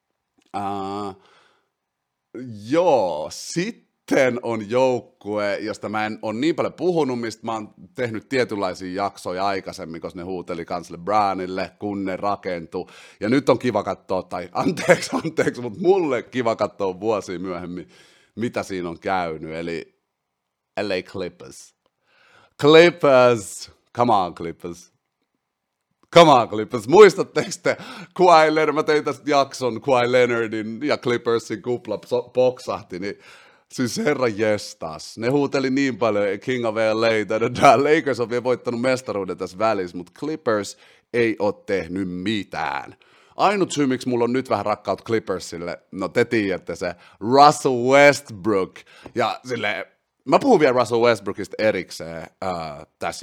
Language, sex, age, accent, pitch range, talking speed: Finnish, male, 30-49, native, 95-130 Hz, 130 wpm